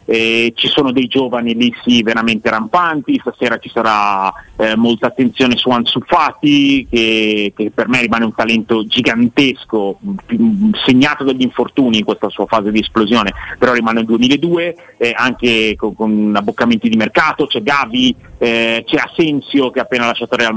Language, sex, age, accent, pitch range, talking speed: Italian, male, 30-49, native, 110-135 Hz, 165 wpm